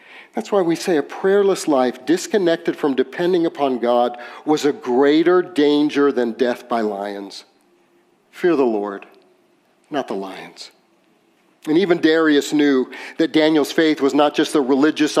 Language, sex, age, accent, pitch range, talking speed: English, male, 50-69, American, 135-155 Hz, 150 wpm